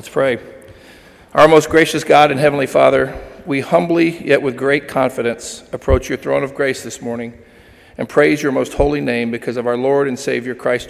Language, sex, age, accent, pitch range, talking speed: English, male, 40-59, American, 115-145 Hz, 195 wpm